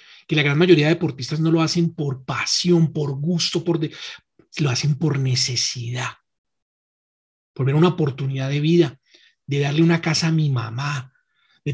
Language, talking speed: Spanish, 170 wpm